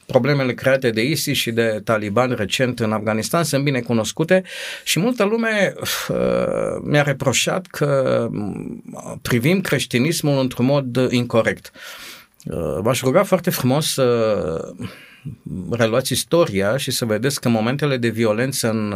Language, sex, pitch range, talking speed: Romanian, male, 110-130 Hz, 130 wpm